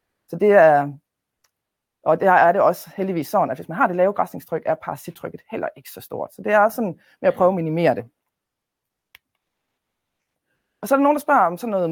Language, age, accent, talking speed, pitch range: Danish, 30-49, native, 220 wpm, 160-205 Hz